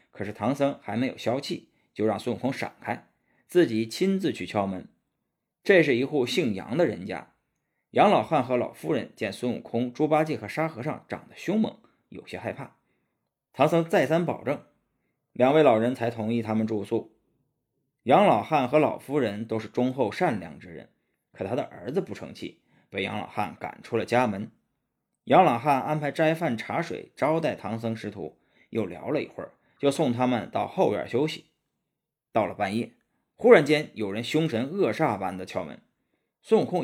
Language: Chinese